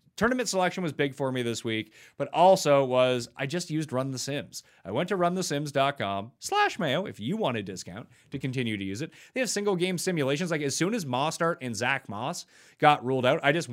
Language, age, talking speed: English, 30-49, 225 wpm